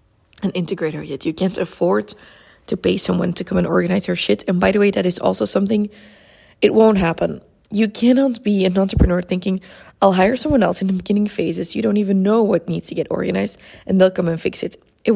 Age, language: 20-39, English